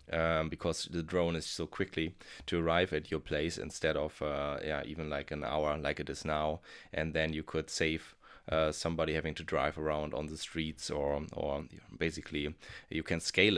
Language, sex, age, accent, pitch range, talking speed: English, male, 20-39, German, 80-90 Hz, 195 wpm